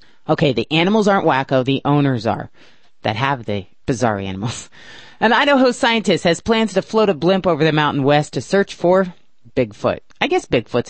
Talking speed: 180 wpm